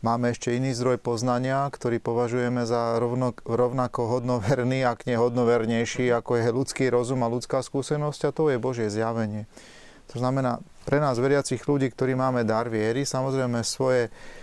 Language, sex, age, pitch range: Slovak, male, 30-49, 120-130 Hz